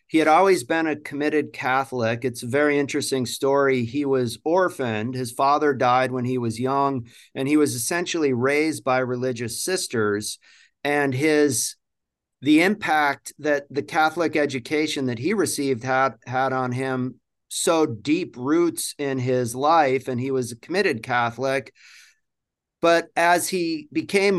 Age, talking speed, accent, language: 40-59, 150 wpm, American, English